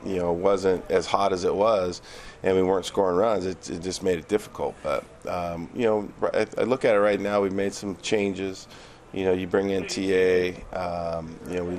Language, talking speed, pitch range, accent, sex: English, 230 wpm, 85-95 Hz, American, male